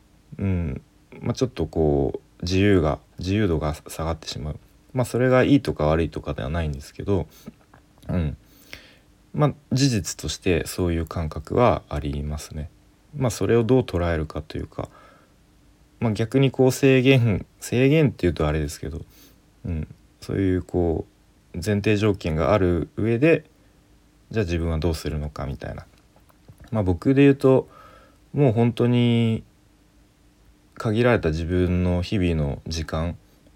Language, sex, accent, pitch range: Japanese, male, native, 80-110 Hz